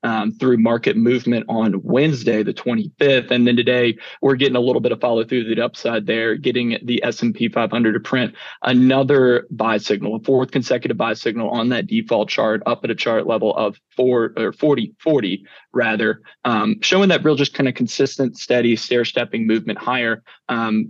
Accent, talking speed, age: American, 170 wpm, 20-39